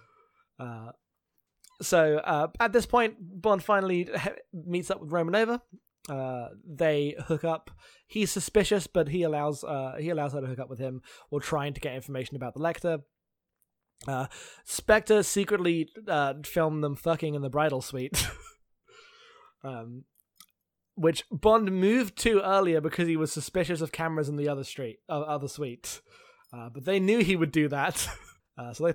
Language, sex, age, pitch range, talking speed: English, male, 20-39, 140-180 Hz, 160 wpm